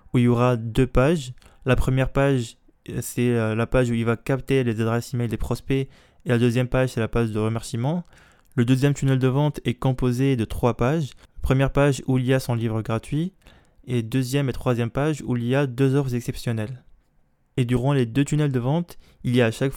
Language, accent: French, French